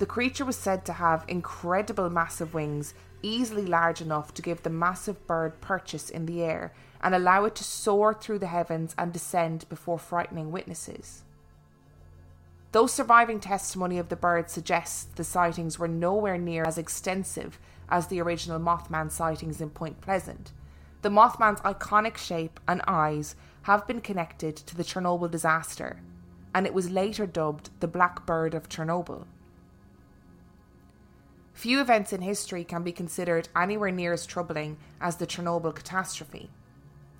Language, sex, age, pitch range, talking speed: English, female, 20-39, 155-190 Hz, 150 wpm